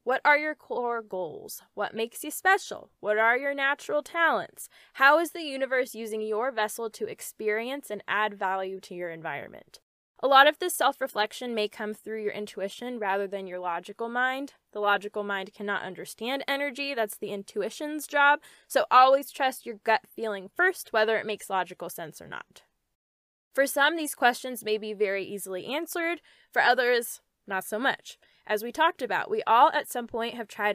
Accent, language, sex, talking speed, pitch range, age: American, English, female, 180 wpm, 205-270 Hz, 10-29